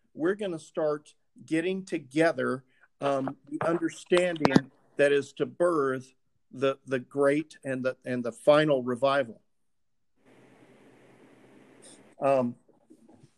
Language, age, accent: English, 50-69, American